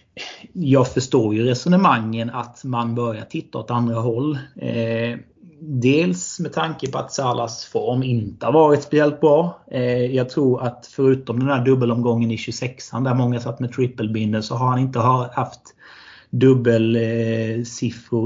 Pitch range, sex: 115-130 Hz, male